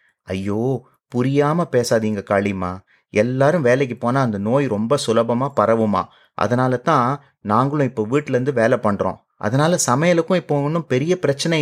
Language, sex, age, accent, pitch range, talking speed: Tamil, male, 30-49, native, 115-150 Hz, 130 wpm